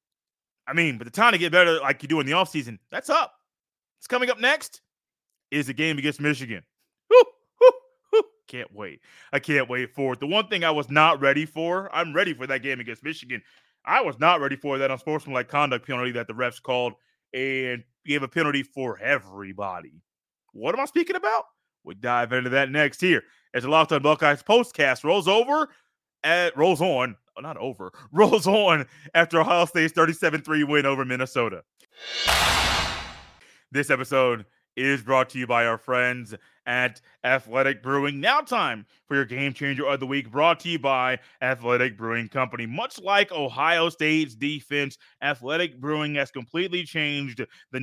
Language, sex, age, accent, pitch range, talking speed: English, male, 20-39, American, 130-165 Hz, 180 wpm